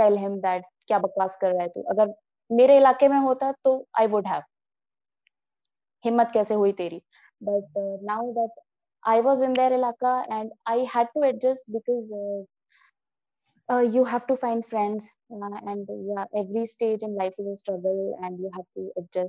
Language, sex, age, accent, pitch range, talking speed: Telugu, female, 20-39, native, 210-260 Hz, 170 wpm